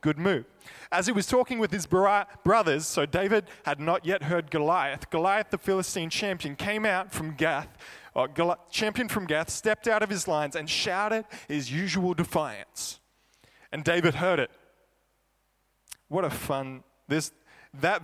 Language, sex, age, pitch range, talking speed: English, male, 20-39, 155-205 Hz, 155 wpm